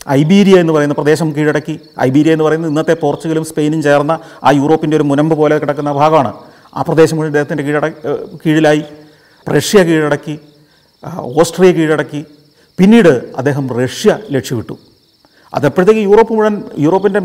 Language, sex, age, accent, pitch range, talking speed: Malayalam, male, 40-59, native, 135-170 Hz, 125 wpm